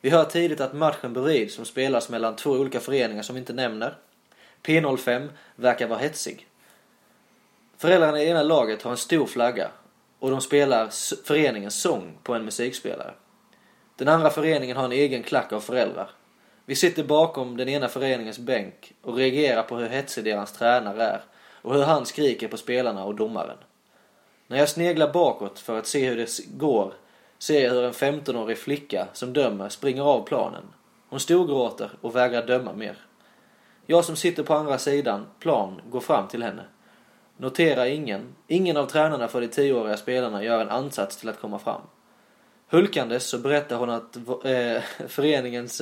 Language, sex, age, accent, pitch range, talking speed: Swedish, male, 20-39, native, 120-145 Hz, 165 wpm